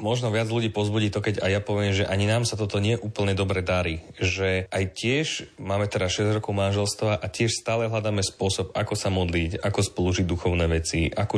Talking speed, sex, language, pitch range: 205 wpm, male, Slovak, 90-105 Hz